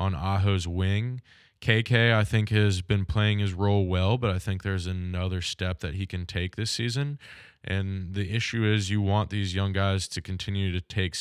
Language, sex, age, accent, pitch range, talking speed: English, male, 20-39, American, 95-105 Hz, 200 wpm